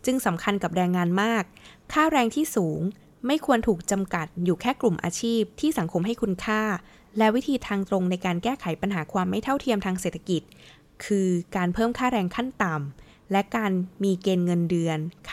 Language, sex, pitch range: Thai, female, 170-225 Hz